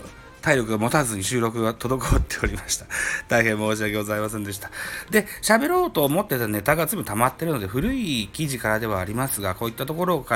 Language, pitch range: Japanese, 105-165 Hz